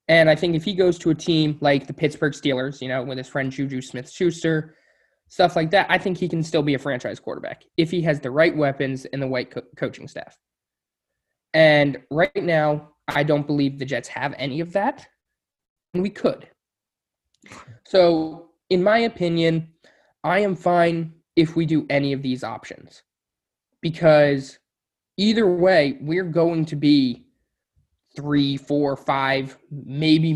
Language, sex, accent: English, male, American